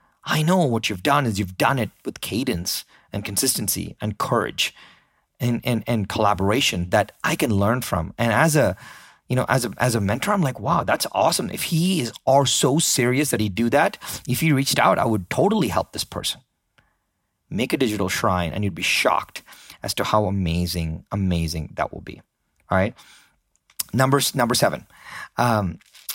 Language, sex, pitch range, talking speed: English, male, 110-145 Hz, 185 wpm